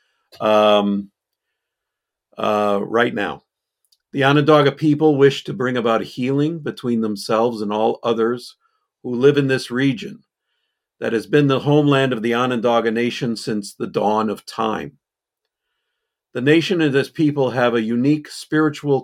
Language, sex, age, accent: English, male, 50-69, American